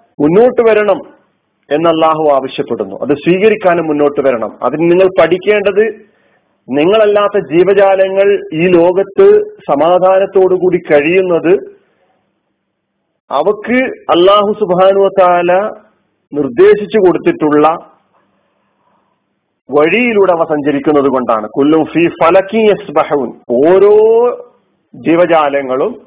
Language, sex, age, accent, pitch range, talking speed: Malayalam, male, 40-59, native, 165-210 Hz, 75 wpm